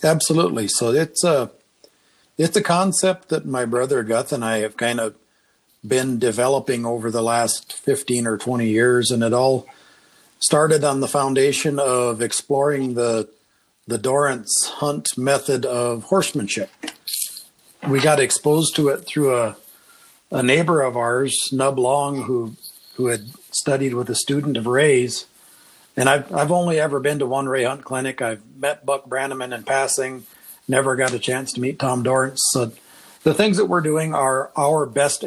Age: 50-69